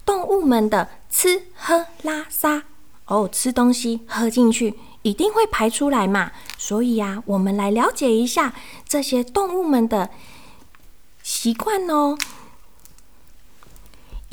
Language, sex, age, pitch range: Chinese, female, 20-39, 205-295 Hz